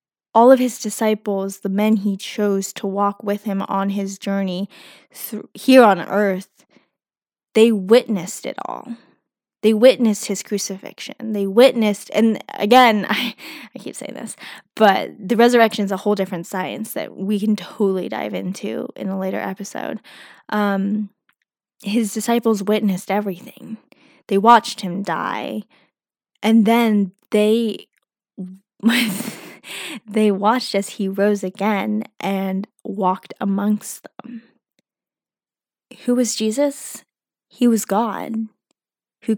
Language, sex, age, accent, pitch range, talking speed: English, female, 10-29, American, 195-235 Hz, 125 wpm